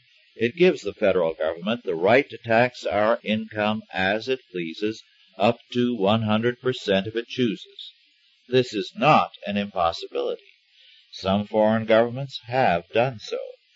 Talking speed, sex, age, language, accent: 135 wpm, male, 50-69, English, American